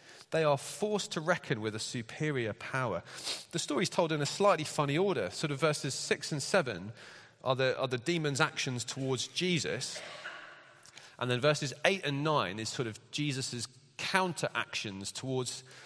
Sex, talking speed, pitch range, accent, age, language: male, 170 wpm, 120-175 Hz, British, 30-49, English